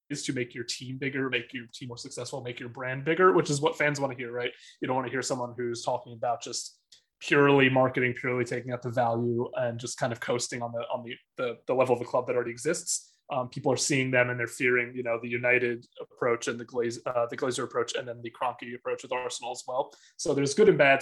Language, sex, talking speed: English, male, 260 wpm